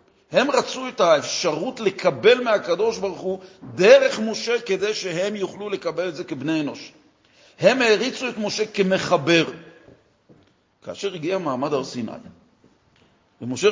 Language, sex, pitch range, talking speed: Hebrew, male, 165-215 Hz, 115 wpm